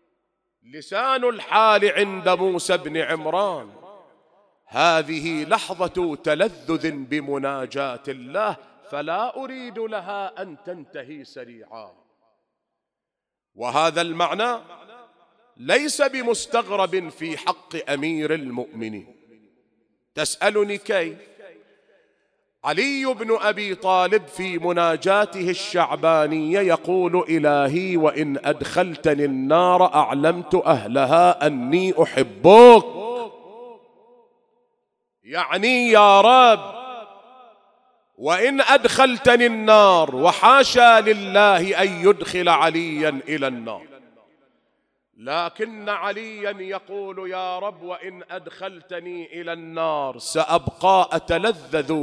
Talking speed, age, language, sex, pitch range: 75 wpm, 40-59, English, male, 160-220 Hz